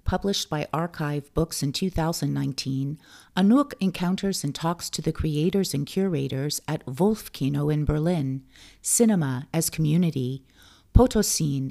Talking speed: 120 wpm